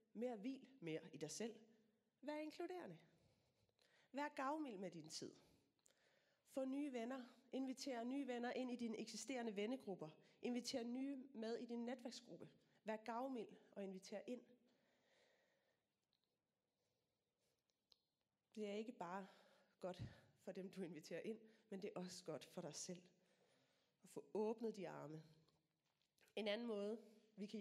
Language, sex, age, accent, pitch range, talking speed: Danish, female, 30-49, native, 180-250 Hz, 135 wpm